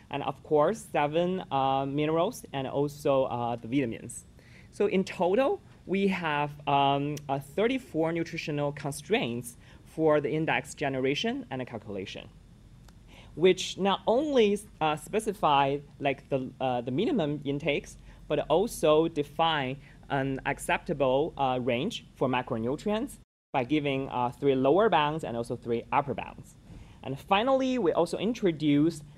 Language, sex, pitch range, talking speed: English, male, 135-175 Hz, 130 wpm